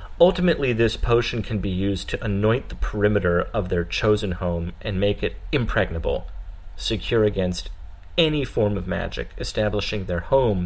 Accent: American